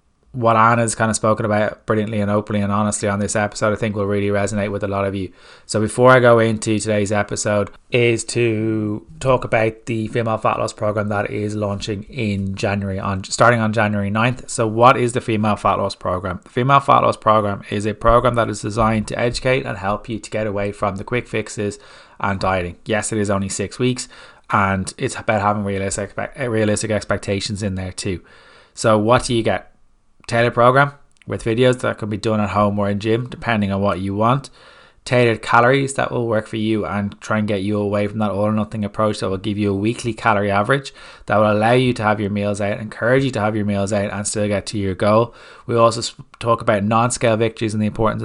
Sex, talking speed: male, 225 wpm